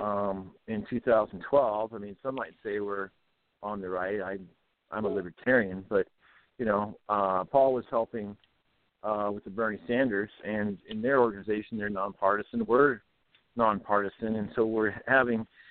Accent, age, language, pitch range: American, 50-69, English, 105-125 Hz